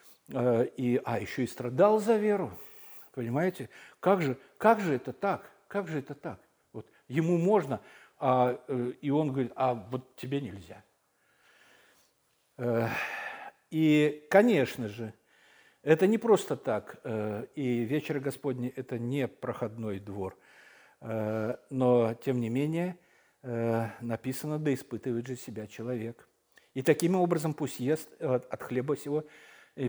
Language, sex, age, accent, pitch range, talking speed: Russian, male, 60-79, native, 125-160 Hz, 115 wpm